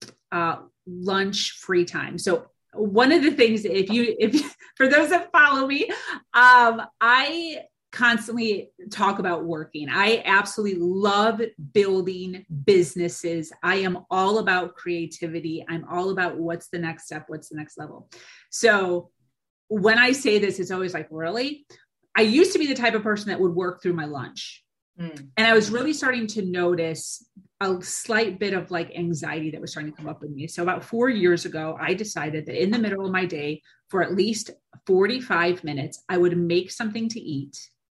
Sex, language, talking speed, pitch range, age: female, English, 180 wpm, 170-230 Hz, 30-49